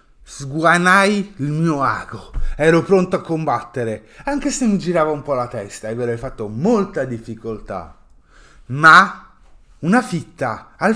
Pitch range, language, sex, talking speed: 115-175 Hz, Italian, male, 135 wpm